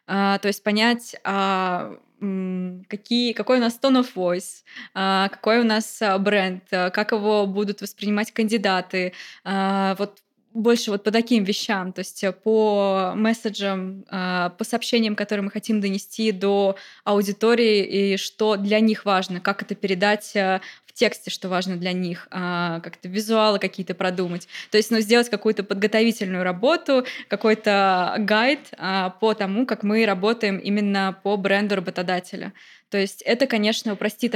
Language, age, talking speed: Russian, 20-39, 150 wpm